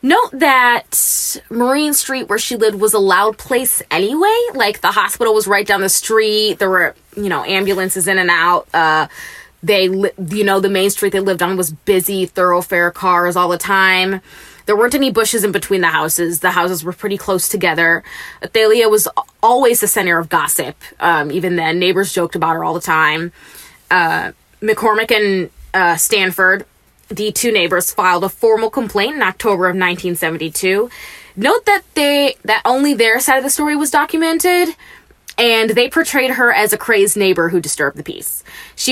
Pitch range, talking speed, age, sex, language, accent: 180-225 Hz, 180 wpm, 20-39, female, English, American